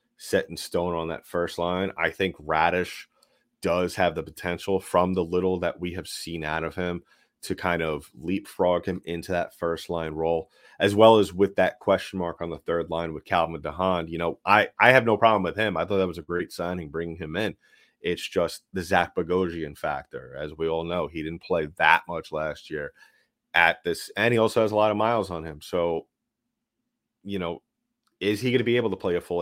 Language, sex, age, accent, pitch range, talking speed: English, male, 30-49, American, 85-95 Hz, 220 wpm